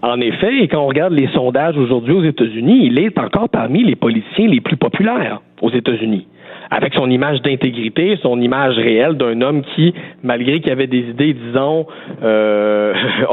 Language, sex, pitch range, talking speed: French, male, 125-165 Hz, 175 wpm